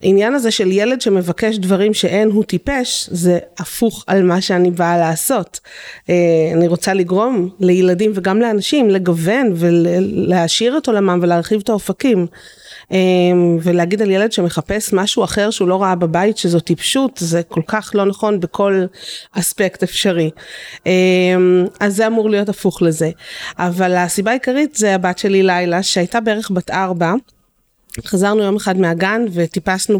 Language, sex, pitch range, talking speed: Hebrew, female, 175-215 Hz, 140 wpm